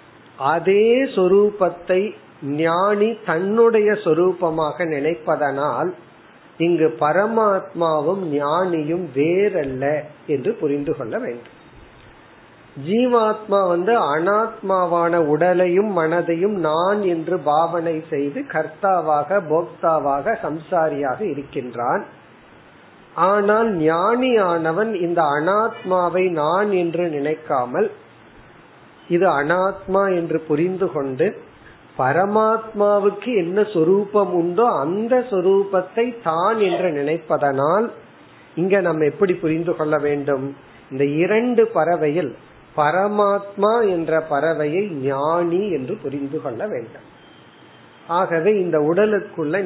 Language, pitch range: Tamil, 155-200 Hz